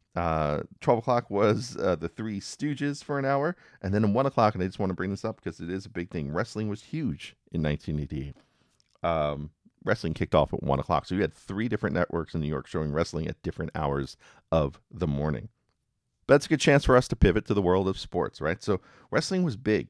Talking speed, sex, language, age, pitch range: 230 wpm, male, English, 40-59, 80-110 Hz